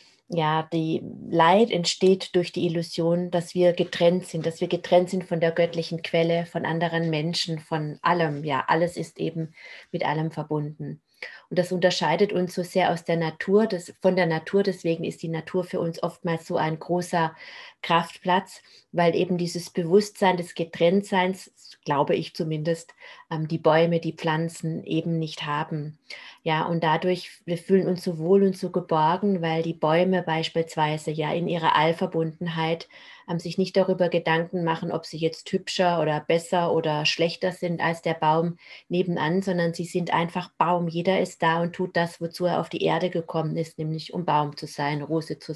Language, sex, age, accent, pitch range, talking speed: German, female, 30-49, German, 160-180 Hz, 175 wpm